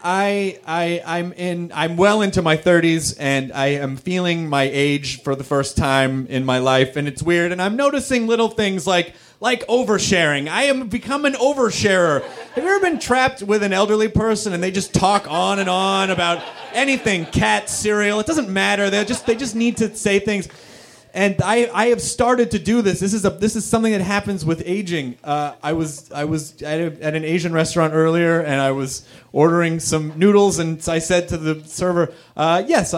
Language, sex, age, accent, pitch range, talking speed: English, male, 30-49, American, 160-230 Hz, 205 wpm